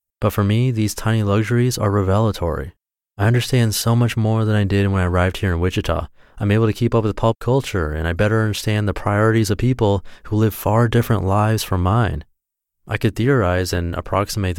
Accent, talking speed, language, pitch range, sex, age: American, 215 wpm, English, 90-115 Hz, male, 30-49